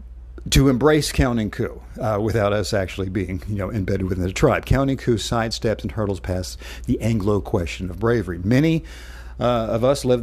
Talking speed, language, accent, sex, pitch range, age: 180 wpm, English, American, male, 100-135 Hz, 50-69